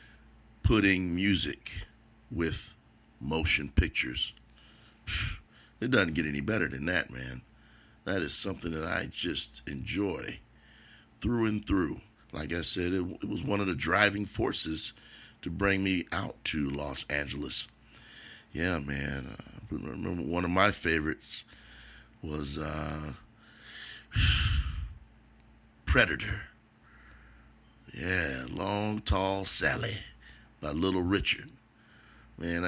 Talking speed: 110 wpm